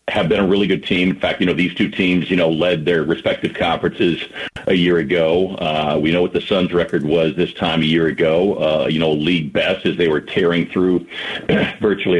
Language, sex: English, male